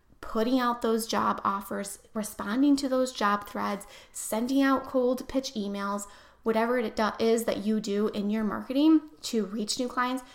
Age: 20-39